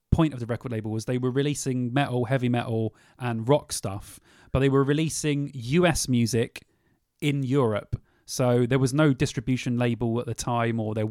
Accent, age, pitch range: British, 30-49, 110-135 Hz